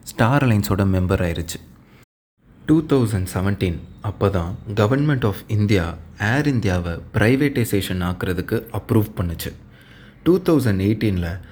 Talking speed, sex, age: 100 wpm, male, 30-49